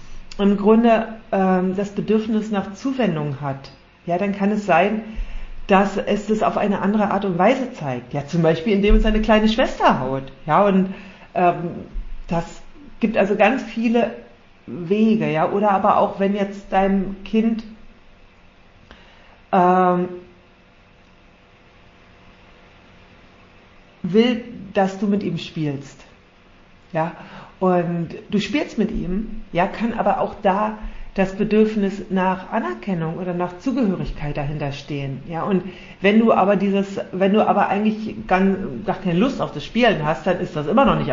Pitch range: 150-205 Hz